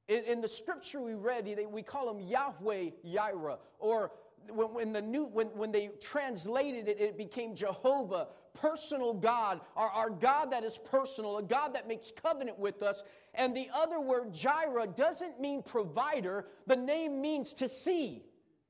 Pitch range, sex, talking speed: 215-305 Hz, male, 150 wpm